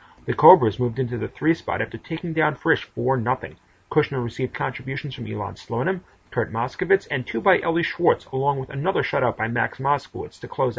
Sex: male